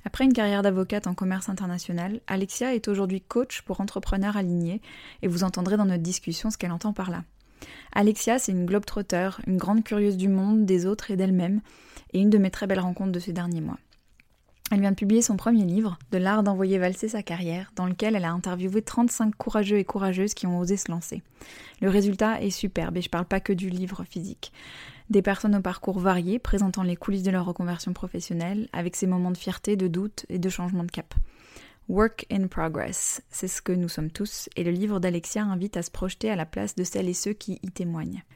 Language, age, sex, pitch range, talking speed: French, 20-39, female, 180-210 Hz, 220 wpm